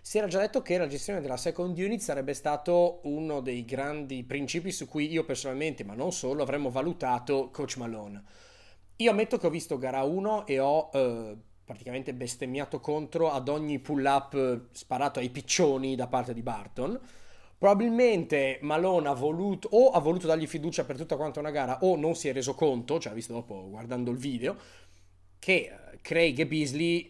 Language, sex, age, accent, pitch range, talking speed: Italian, male, 30-49, native, 125-160 Hz, 175 wpm